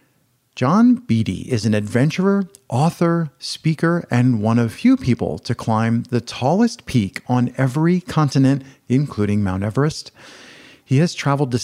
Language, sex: English, male